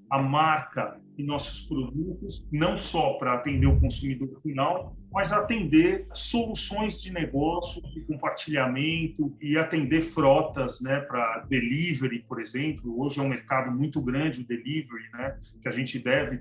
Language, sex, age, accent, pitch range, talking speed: Portuguese, male, 40-59, Brazilian, 130-175 Hz, 145 wpm